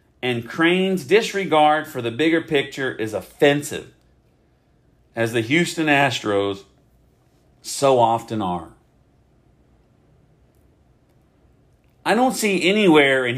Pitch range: 115-160 Hz